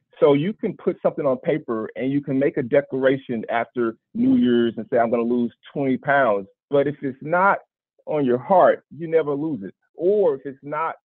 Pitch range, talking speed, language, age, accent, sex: 120-180 Hz, 210 wpm, English, 40-59, American, male